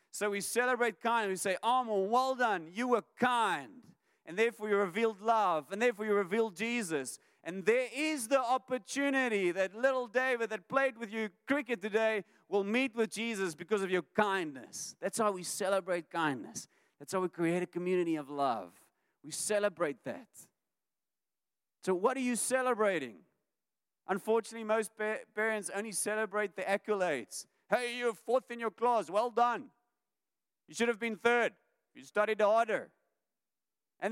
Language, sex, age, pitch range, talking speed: English, male, 40-59, 185-235 Hz, 155 wpm